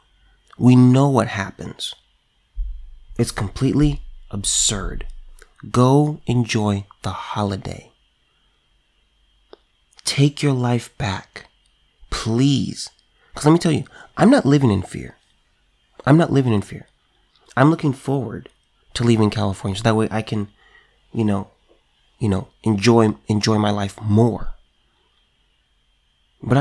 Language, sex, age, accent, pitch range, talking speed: English, male, 30-49, American, 105-135 Hz, 115 wpm